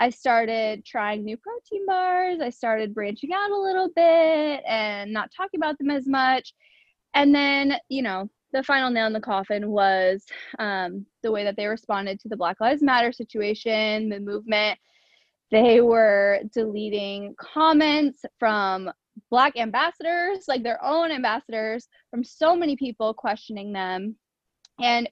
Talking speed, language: 150 wpm, English